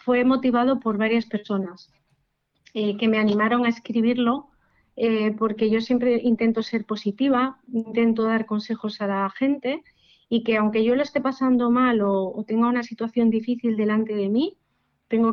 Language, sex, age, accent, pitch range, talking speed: Spanish, female, 30-49, Spanish, 210-240 Hz, 165 wpm